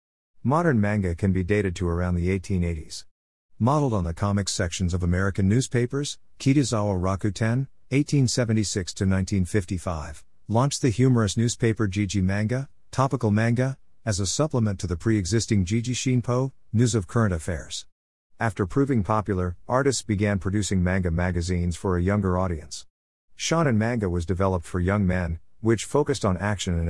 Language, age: English, 50-69